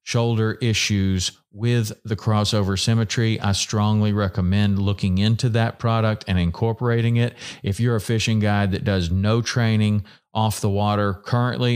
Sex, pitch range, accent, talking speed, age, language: male, 95-110 Hz, American, 150 wpm, 40-59, English